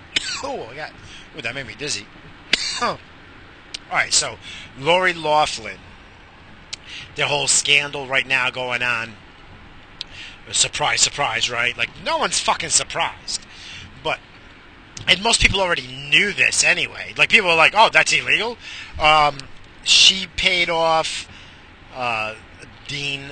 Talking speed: 125 wpm